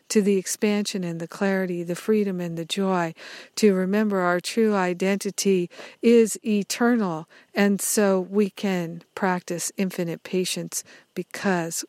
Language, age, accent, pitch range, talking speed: English, 50-69, American, 175-205 Hz, 130 wpm